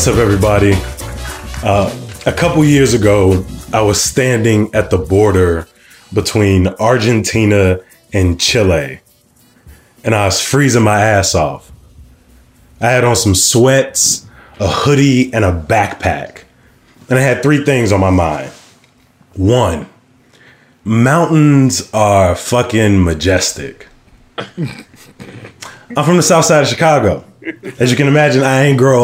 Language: English